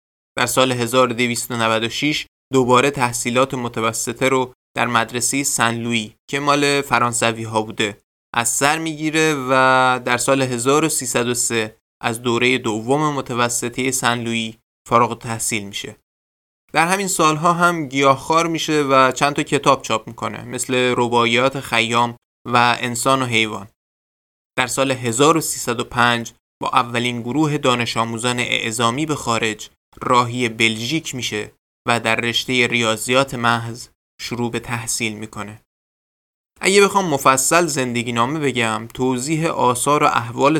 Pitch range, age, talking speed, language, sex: 115-145 Hz, 20-39, 120 wpm, Persian, male